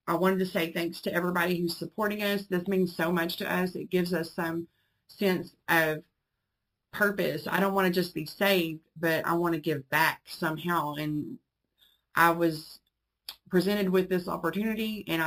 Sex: female